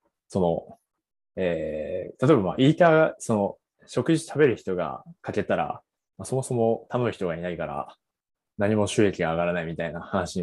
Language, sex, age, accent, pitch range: Japanese, male, 20-39, native, 90-130 Hz